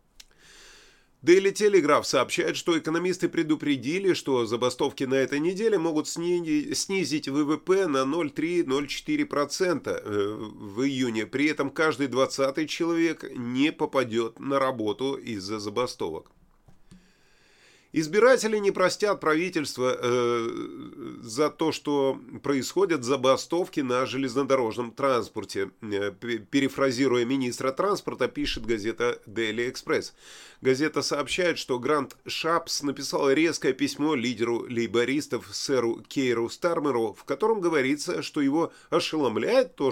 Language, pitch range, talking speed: Russian, 125-180 Hz, 105 wpm